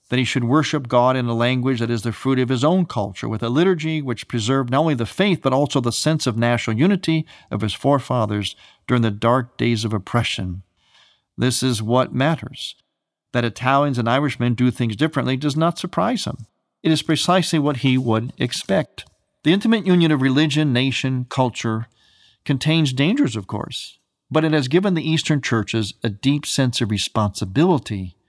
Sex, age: male, 50-69